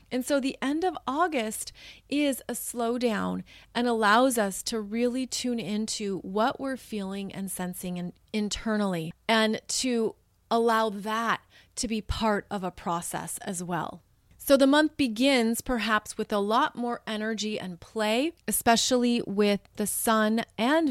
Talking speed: 145 wpm